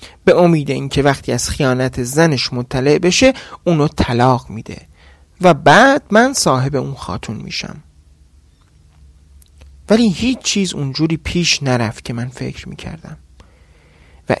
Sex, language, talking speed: male, Persian, 130 wpm